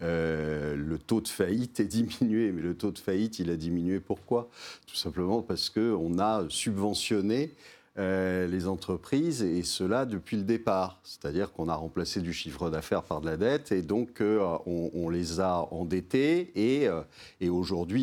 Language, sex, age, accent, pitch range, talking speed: French, male, 50-69, French, 90-115 Hz, 175 wpm